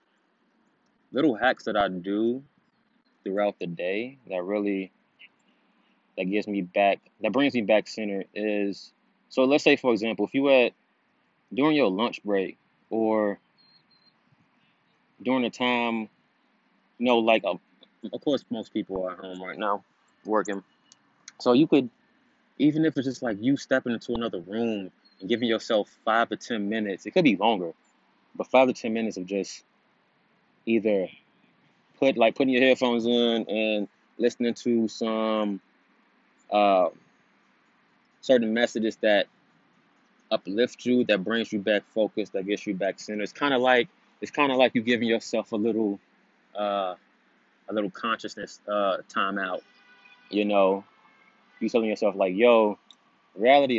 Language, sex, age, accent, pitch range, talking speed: English, male, 20-39, American, 100-125 Hz, 150 wpm